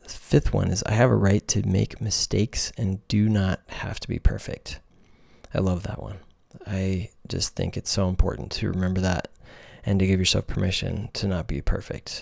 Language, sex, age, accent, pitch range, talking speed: English, male, 20-39, American, 95-115 Hz, 190 wpm